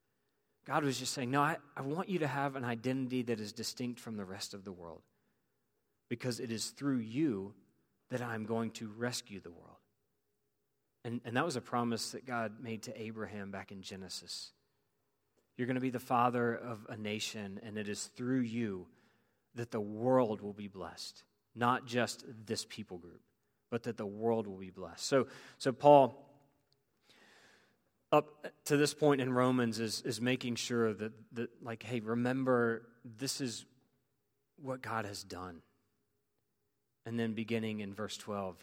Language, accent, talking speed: English, American, 170 wpm